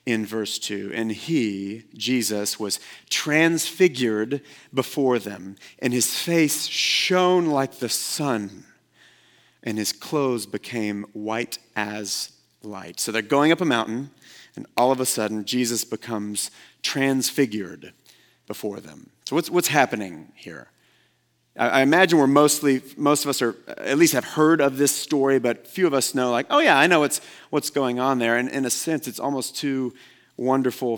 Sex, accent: male, American